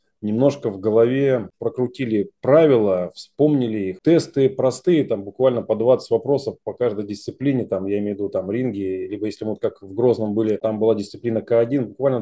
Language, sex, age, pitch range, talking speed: Russian, male, 20-39, 110-130 Hz, 175 wpm